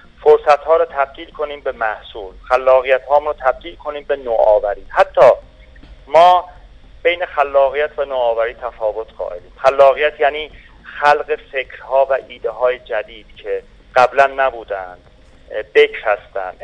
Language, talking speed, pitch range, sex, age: Persian, 120 wpm, 130-175 Hz, male, 40-59